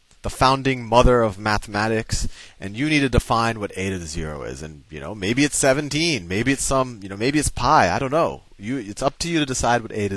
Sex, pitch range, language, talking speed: male, 100-140 Hz, English, 255 wpm